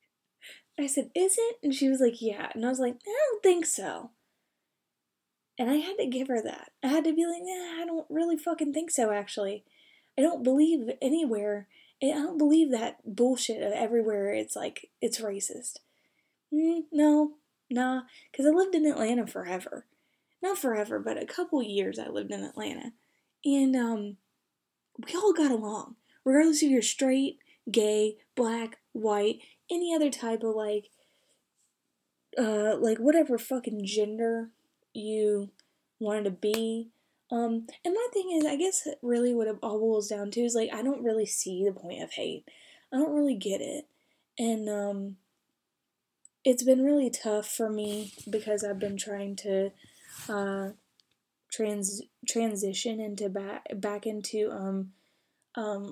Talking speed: 160 wpm